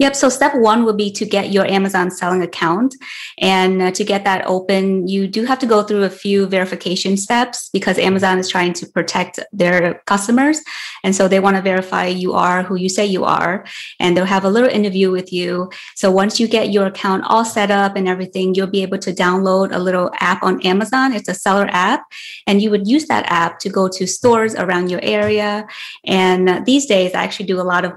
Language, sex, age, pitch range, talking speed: English, female, 20-39, 180-210 Hz, 220 wpm